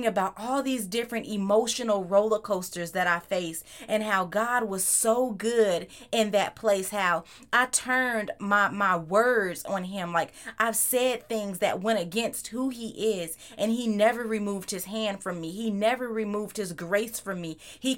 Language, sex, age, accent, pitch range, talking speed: English, female, 30-49, American, 200-245 Hz, 175 wpm